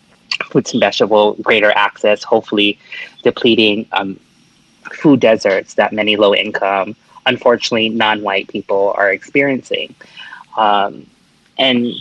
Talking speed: 110 wpm